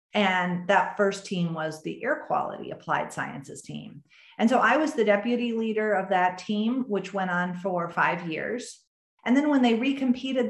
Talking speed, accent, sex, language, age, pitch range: 185 wpm, American, female, English, 40-59, 175-215 Hz